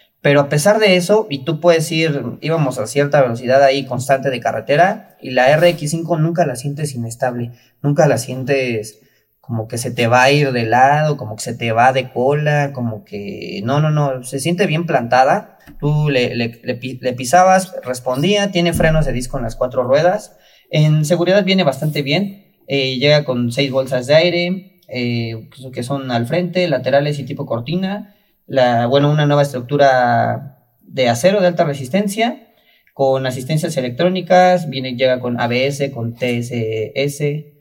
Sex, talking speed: male, 170 wpm